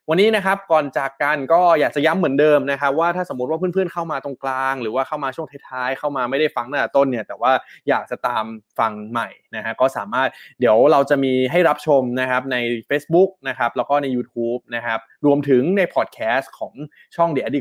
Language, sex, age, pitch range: Thai, male, 20-39, 120-150 Hz